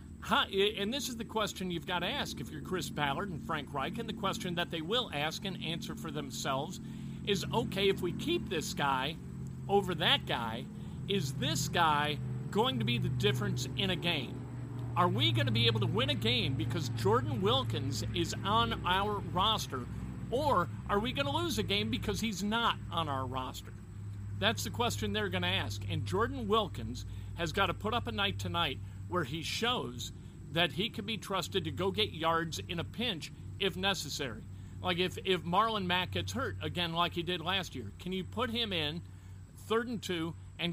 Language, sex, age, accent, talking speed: English, male, 50-69, American, 200 wpm